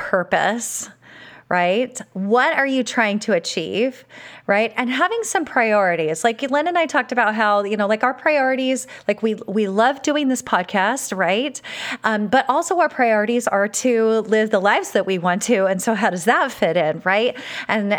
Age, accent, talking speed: 30-49, American, 185 wpm